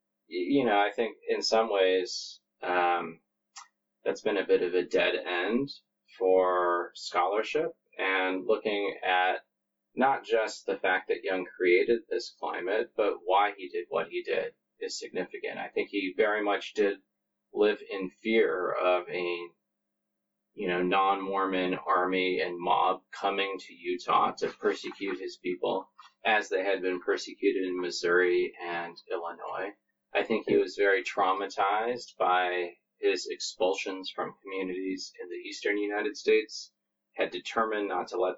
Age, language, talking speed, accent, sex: 30-49, English, 145 wpm, American, male